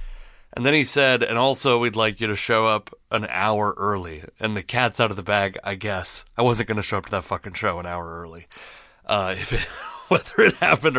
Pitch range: 95-115 Hz